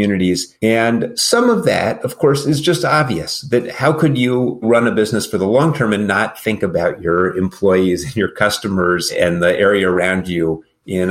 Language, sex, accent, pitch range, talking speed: English, male, American, 90-115 Hz, 195 wpm